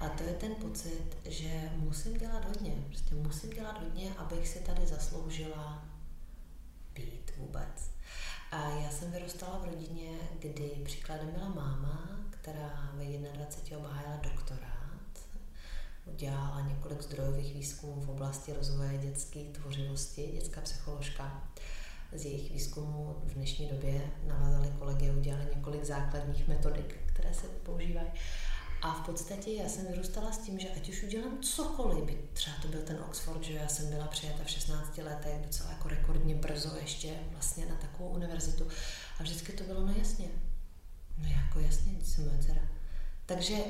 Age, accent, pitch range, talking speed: 30-49, native, 135-175 Hz, 145 wpm